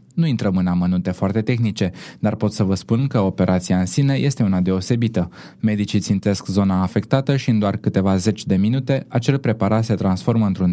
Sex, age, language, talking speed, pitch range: male, 20-39, Romanian, 190 wpm, 95-120 Hz